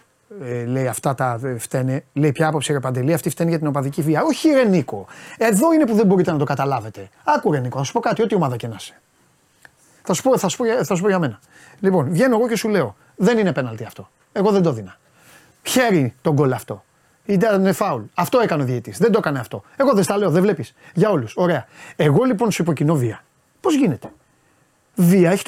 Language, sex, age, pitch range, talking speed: Greek, male, 30-49, 140-195 Hz, 215 wpm